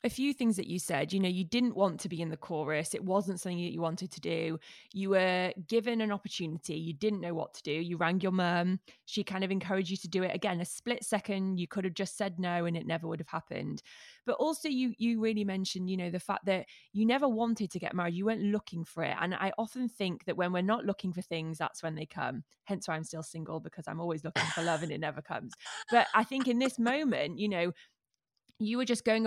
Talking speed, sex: 260 wpm, female